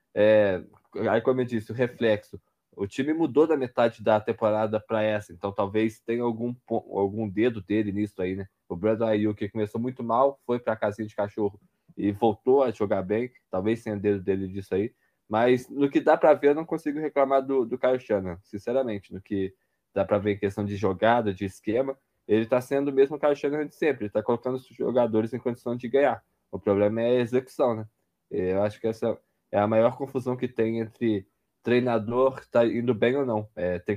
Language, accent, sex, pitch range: Portuguese, Brazilian, male, 105-130 Hz